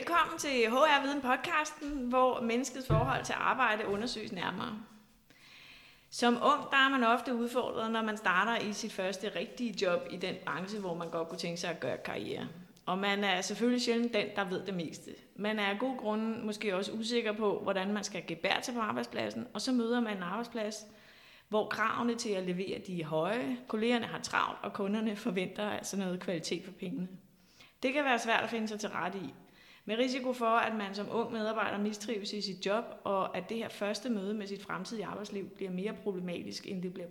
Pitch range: 195-235 Hz